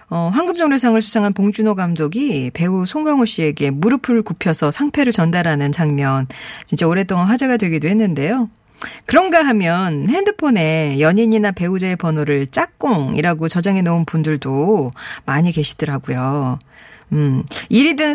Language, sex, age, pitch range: Korean, female, 40-59, 160-250 Hz